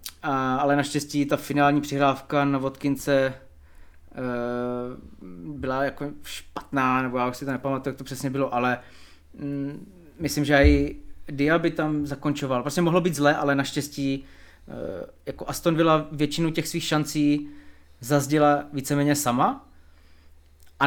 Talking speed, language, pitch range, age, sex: 140 wpm, Czech, 110-150 Hz, 20-39, male